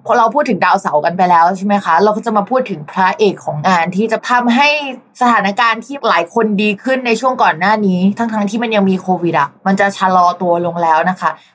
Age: 20-39